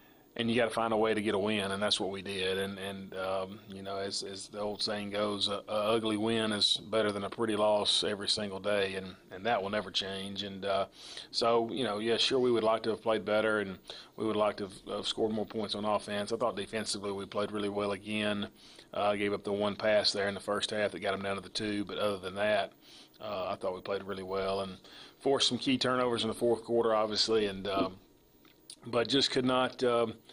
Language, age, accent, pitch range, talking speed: English, 30-49, American, 100-110 Hz, 250 wpm